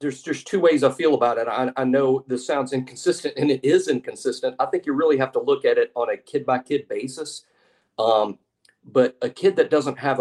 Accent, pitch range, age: American, 130-200 Hz, 40-59